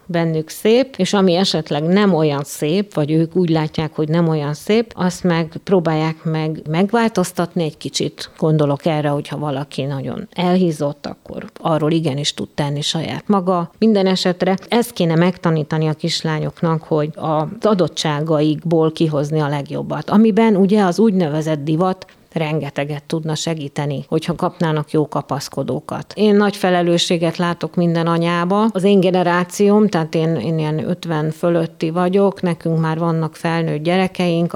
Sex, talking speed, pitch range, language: female, 140 wpm, 155-180 Hz, Hungarian